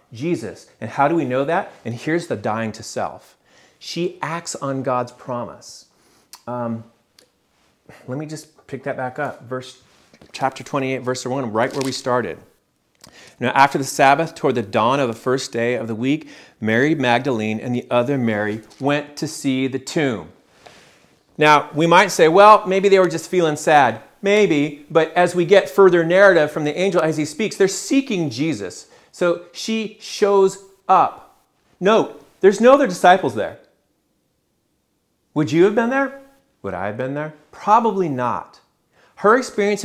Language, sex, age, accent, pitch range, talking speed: English, male, 40-59, American, 130-180 Hz, 165 wpm